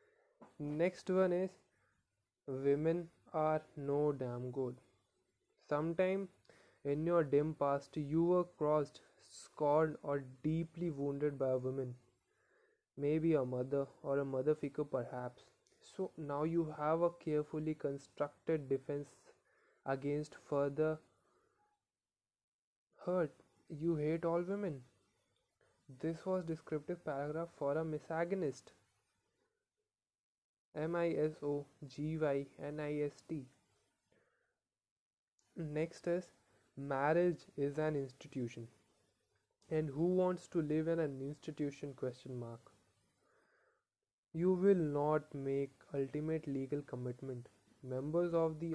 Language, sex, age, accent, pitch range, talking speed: English, male, 20-39, Indian, 135-165 Hz, 100 wpm